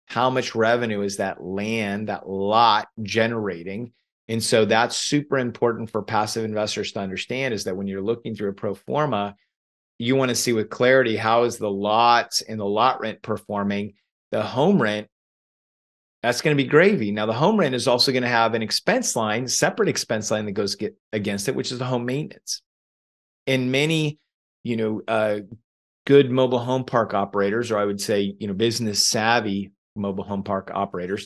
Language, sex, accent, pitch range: English, male, American, 100-125 Hz